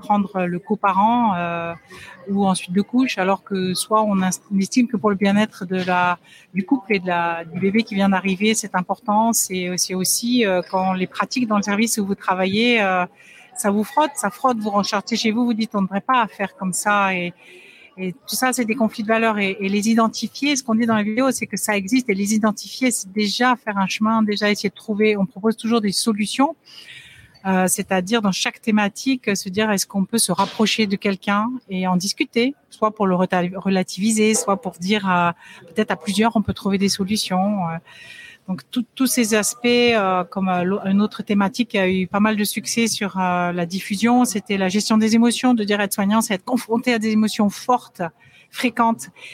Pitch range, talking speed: 190-225 Hz, 210 wpm